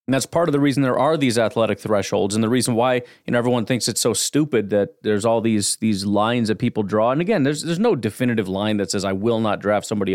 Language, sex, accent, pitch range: English, male, American, 110-150 Hz